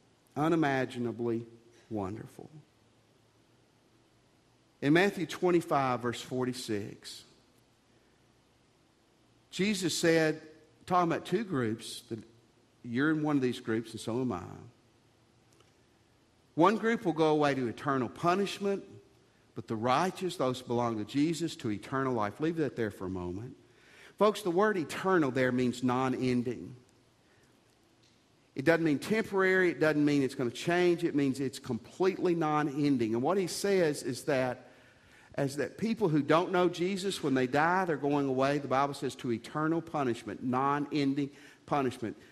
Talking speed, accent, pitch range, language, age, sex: 140 wpm, American, 125-175 Hz, English, 50-69, male